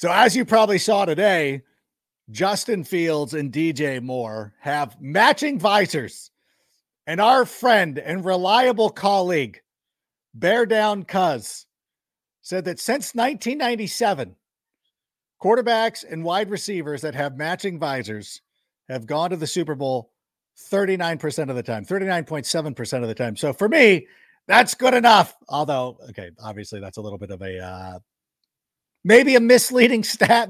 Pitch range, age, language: 135-205 Hz, 50-69, English